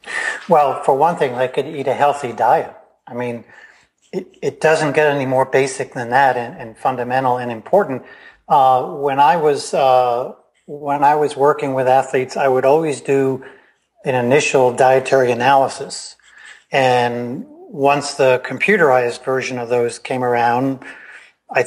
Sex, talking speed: male, 150 wpm